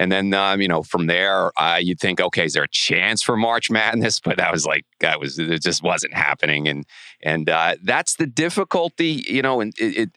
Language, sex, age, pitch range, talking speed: English, male, 30-49, 80-95 Hz, 225 wpm